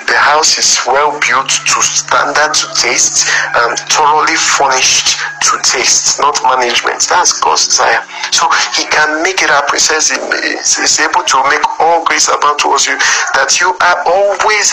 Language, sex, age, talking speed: English, male, 50-69, 165 wpm